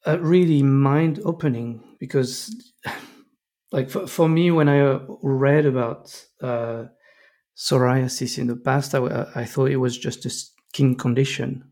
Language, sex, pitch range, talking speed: English, male, 125-150 Hz, 140 wpm